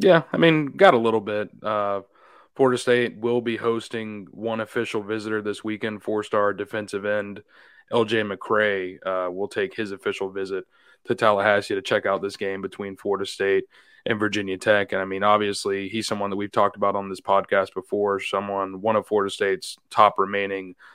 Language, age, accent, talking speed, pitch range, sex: English, 20-39, American, 180 wpm, 95-110 Hz, male